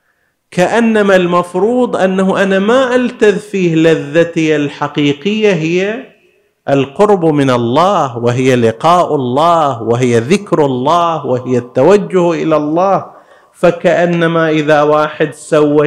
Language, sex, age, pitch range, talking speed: Arabic, male, 50-69, 135-190 Hz, 100 wpm